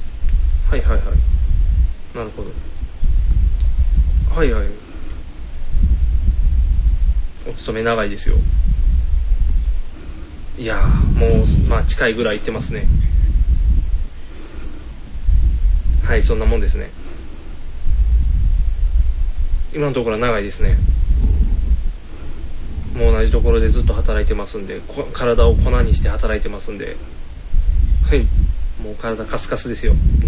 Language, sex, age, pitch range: Japanese, male, 20-39, 70-80 Hz